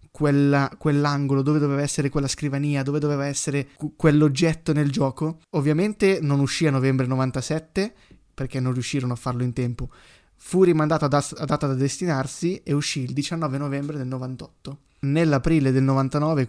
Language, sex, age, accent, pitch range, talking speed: Italian, male, 20-39, native, 130-150 Hz, 155 wpm